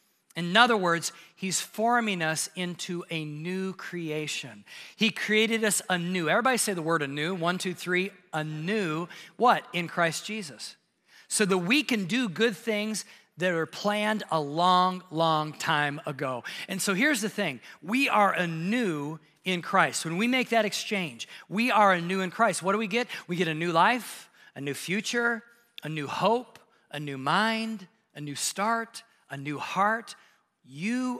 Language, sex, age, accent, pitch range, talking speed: English, male, 40-59, American, 155-205 Hz, 165 wpm